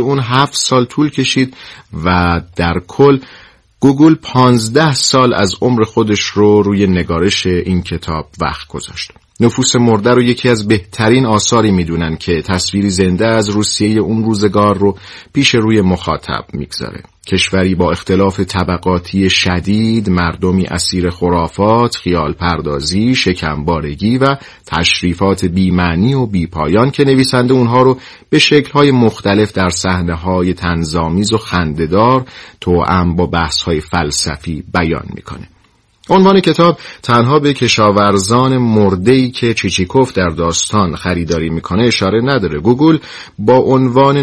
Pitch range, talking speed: 90-120 Hz, 125 wpm